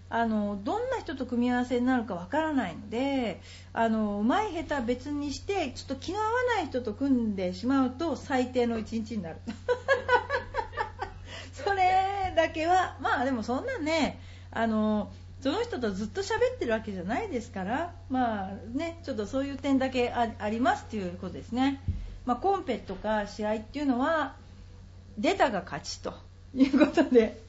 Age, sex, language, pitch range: 40-59, female, Japanese, 200-285 Hz